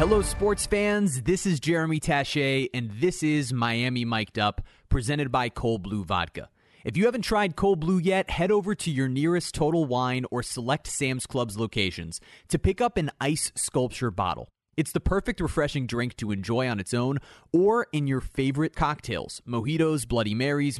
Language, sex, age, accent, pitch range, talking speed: English, male, 30-49, American, 110-155 Hz, 180 wpm